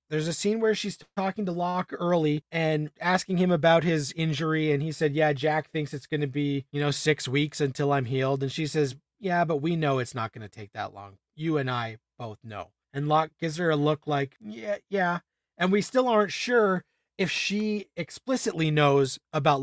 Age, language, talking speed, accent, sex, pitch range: 30-49, English, 215 wpm, American, male, 145-180 Hz